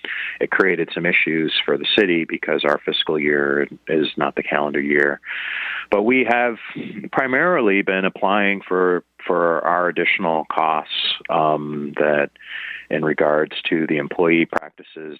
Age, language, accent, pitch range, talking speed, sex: 30-49, English, American, 75-90 Hz, 140 wpm, male